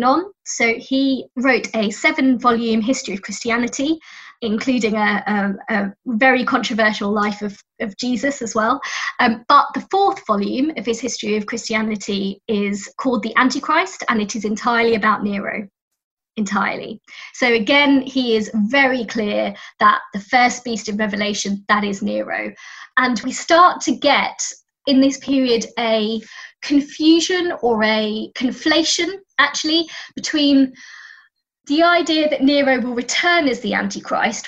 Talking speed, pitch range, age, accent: 140 wpm, 215-270 Hz, 20-39, British